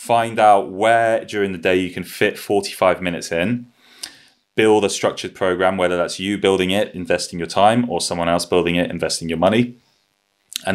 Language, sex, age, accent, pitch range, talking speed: English, male, 30-49, British, 90-115 Hz, 185 wpm